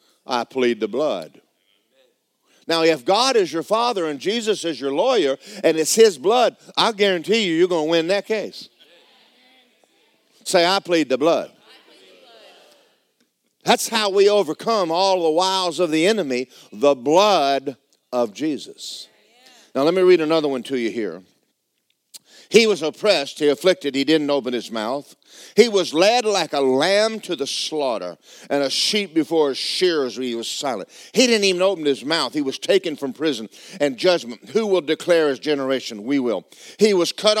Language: English